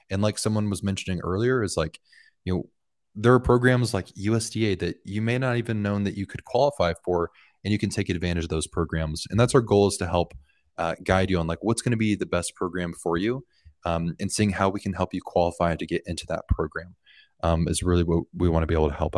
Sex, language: male, English